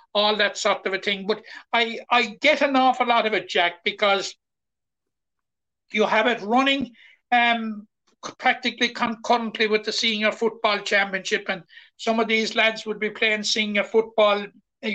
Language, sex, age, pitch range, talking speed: English, male, 60-79, 200-230 Hz, 160 wpm